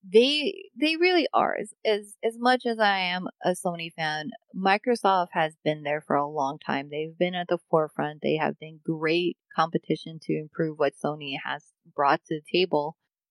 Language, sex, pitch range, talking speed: English, female, 160-200 Hz, 185 wpm